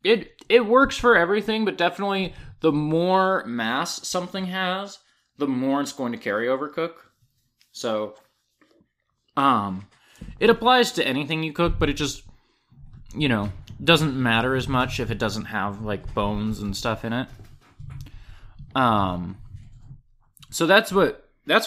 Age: 20-39